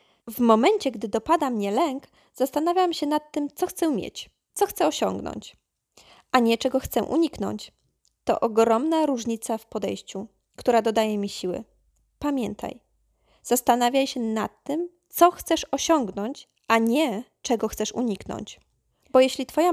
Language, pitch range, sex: Polish, 215-270 Hz, female